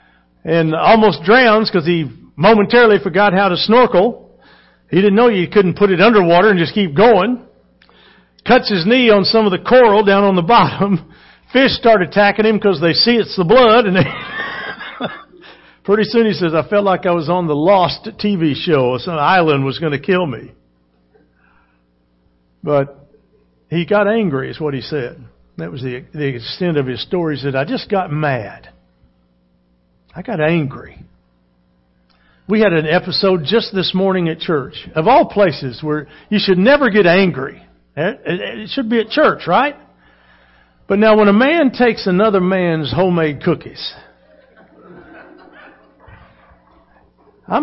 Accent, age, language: American, 60-79, English